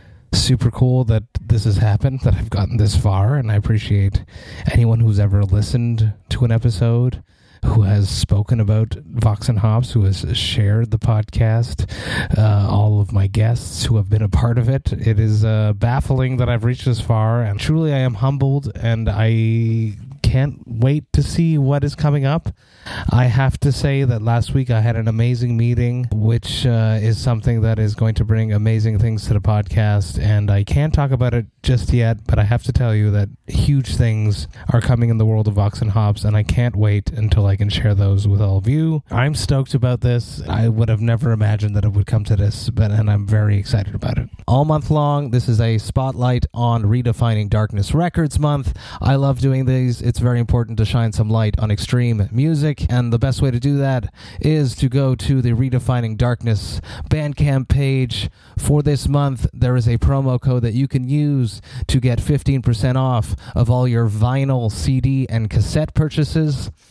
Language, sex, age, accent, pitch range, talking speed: English, male, 30-49, American, 105-130 Hz, 200 wpm